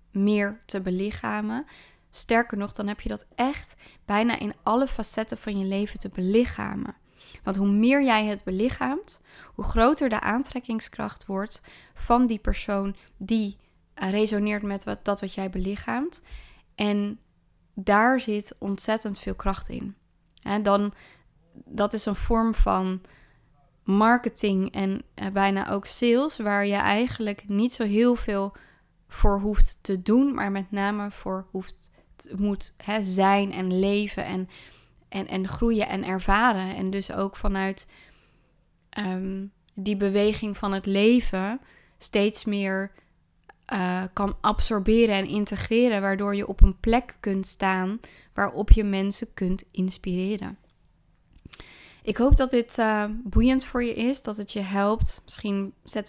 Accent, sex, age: Dutch, female, 20-39